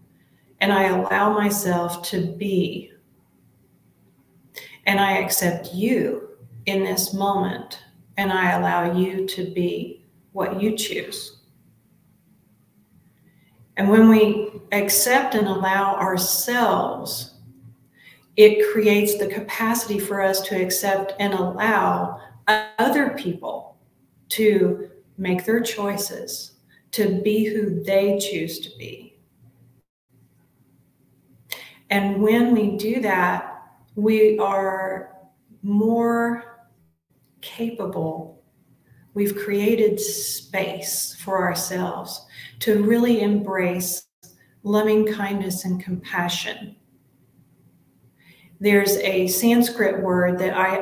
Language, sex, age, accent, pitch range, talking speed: English, female, 40-59, American, 180-210 Hz, 95 wpm